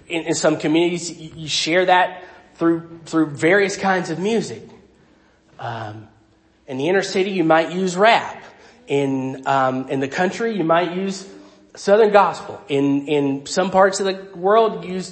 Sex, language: male, English